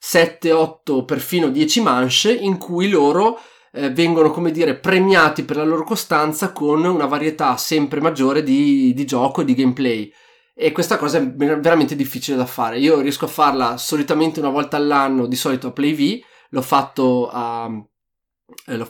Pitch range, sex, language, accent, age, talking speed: 135-165 Hz, male, Italian, native, 20-39, 160 wpm